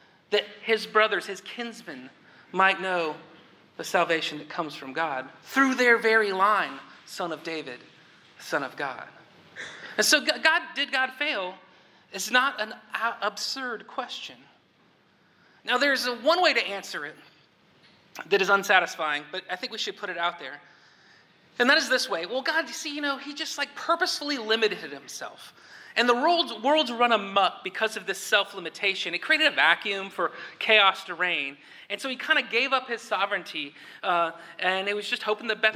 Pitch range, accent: 190-255 Hz, American